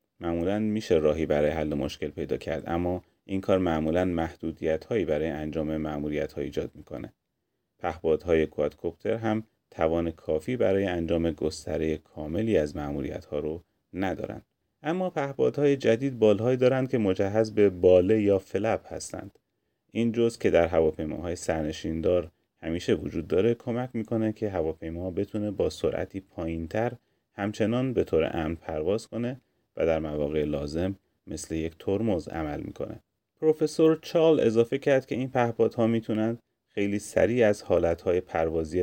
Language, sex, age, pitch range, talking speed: Persian, male, 30-49, 80-115 Hz, 145 wpm